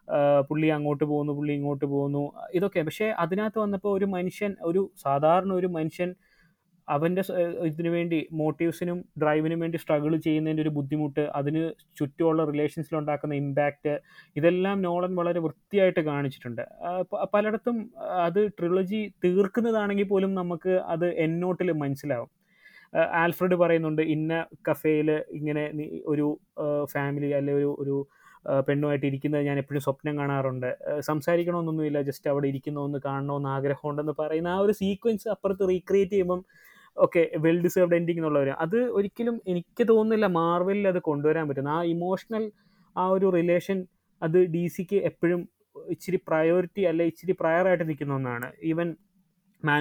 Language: Malayalam